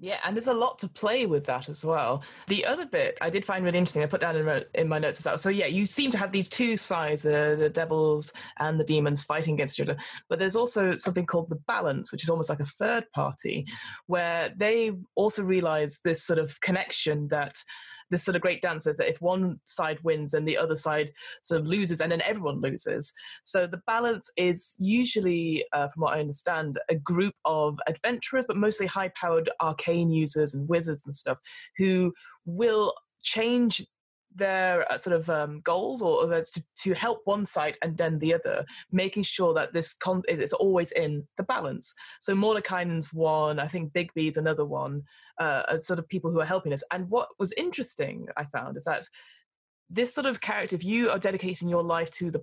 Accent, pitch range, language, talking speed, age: British, 155-200 Hz, English, 205 wpm, 20-39